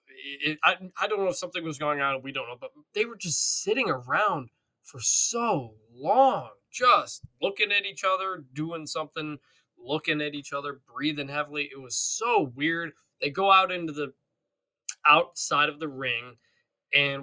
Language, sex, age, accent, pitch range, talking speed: English, male, 20-39, American, 140-195 Hz, 170 wpm